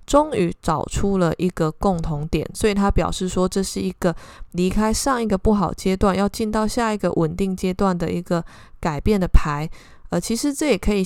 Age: 20-39